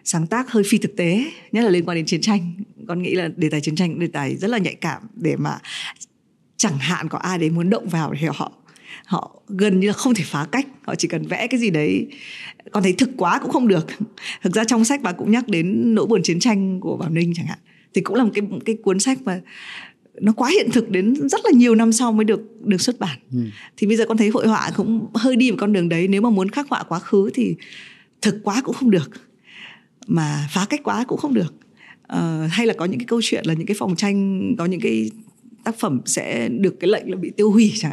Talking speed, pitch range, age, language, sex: 260 wpm, 180-230 Hz, 20-39, Vietnamese, female